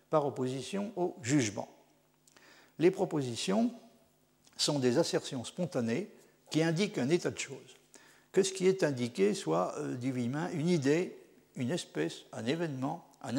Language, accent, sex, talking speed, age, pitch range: French, French, male, 145 wpm, 60-79, 125-180 Hz